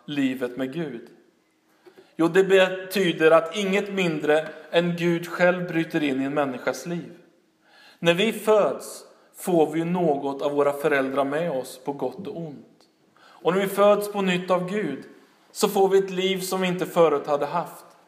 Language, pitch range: Swedish, 140-180 Hz